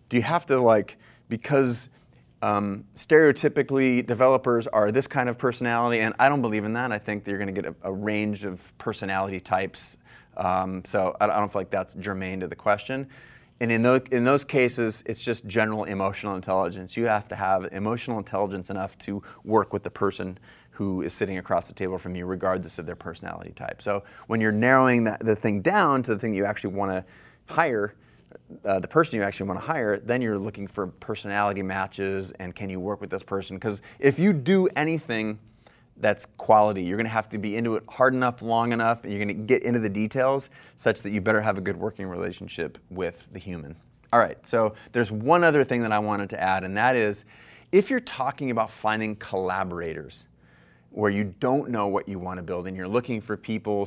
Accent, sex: American, male